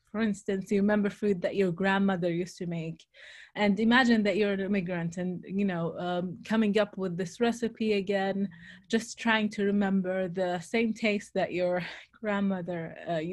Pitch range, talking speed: 185-225 Hz, 170 wpm